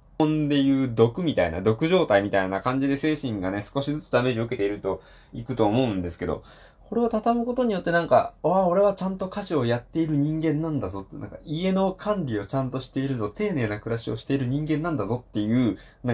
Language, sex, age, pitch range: Japanese, male, 20-39, 100-160 Hz